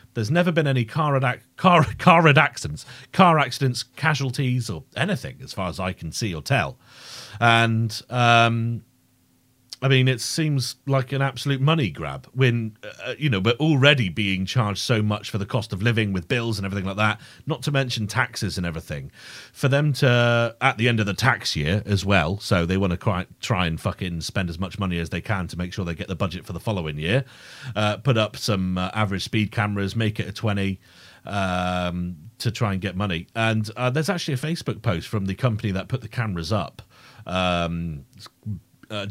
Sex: male